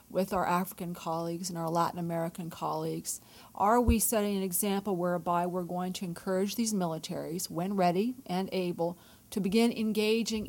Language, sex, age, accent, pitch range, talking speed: English, female, 40-59, American, 165-195 Hz, 160 wpm